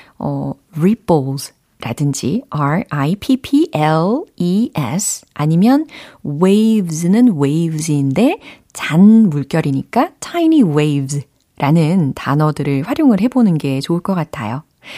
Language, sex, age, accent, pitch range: Korean, female, 40-59, native, 145-225 Hz